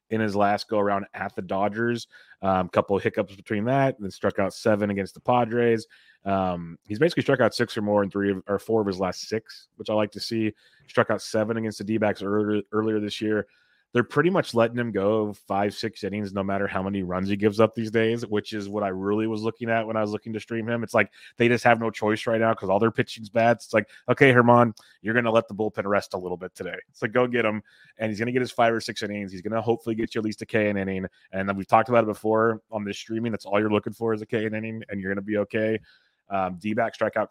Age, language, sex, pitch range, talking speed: 30-49, English, male, 100-115 Hz, 270 wpm